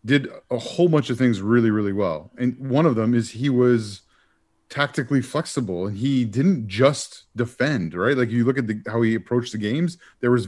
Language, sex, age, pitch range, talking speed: English, male, 30-49, 110-140 Hz, 205 wpm